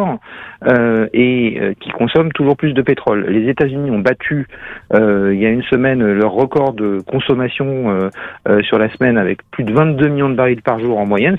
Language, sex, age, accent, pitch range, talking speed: French, male, 50-69, French, 110-150 Hz, 205 wpm